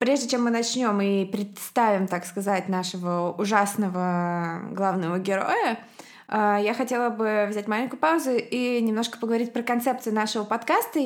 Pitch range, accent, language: 200-245 Hz, native, Russian